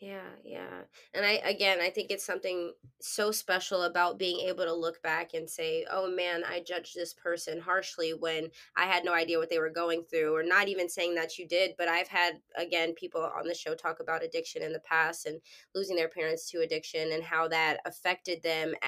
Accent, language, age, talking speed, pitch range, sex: American, English, 20-39, 215 wpm, 165-205 Hz, female